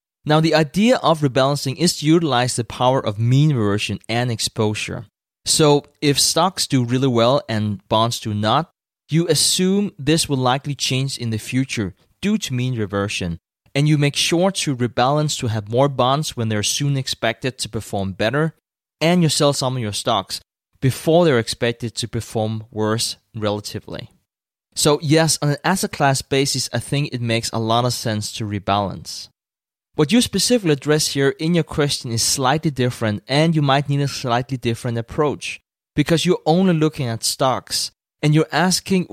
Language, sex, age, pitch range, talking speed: English, male, 20-39, 115-155 Hz, 175 wpm